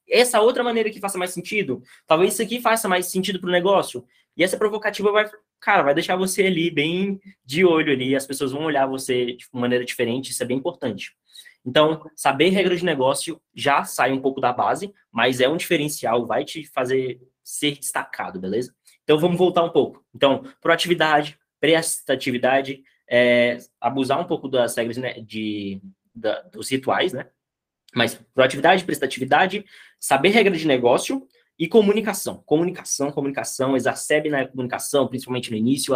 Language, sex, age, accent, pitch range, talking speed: Portuguese, male, 20-39, Brazilian, 130-180 Hz, 165 wpm